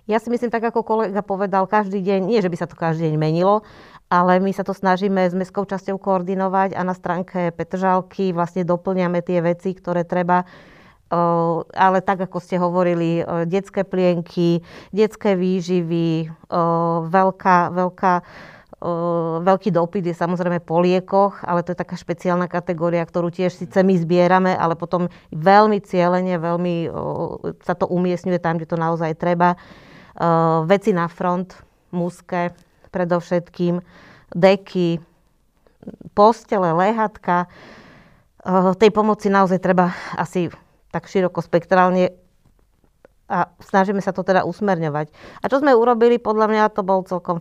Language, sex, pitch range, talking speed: Slovak, female, 175-195 Hz, 140 wpm